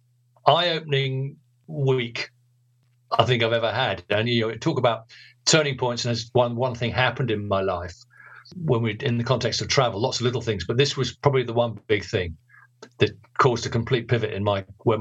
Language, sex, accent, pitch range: English, male, British, 115-140 Hz